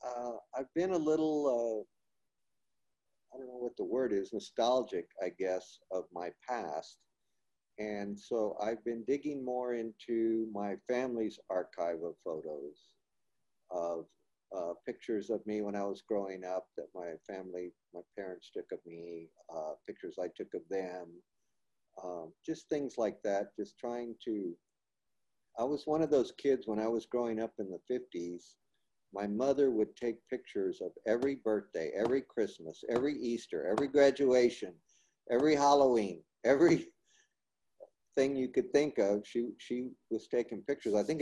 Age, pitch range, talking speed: 50-69, 100-130 Hz, 155 wpm